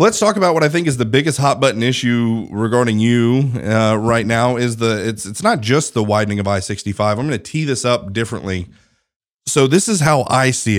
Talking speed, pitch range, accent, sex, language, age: 220 wpm, 105-130 Hz, American, male, English, 30-49